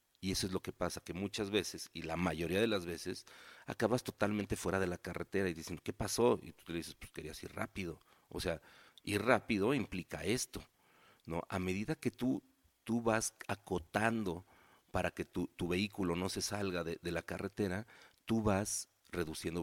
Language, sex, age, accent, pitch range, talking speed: Spanish, male, 40-59, Mexican, 85-110 Hz, 190 wpm